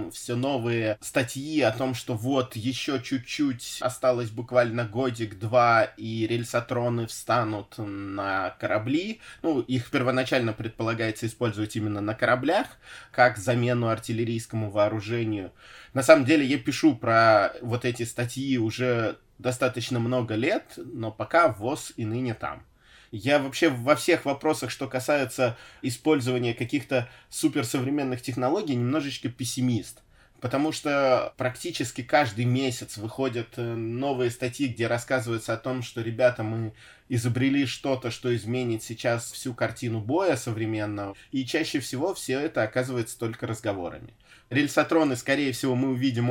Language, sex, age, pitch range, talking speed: Russian, male, 20-39, 115-135 Hz, 125 wpm